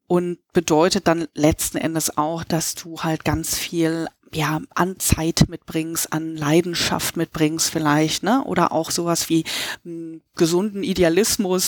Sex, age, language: female, 30-49, German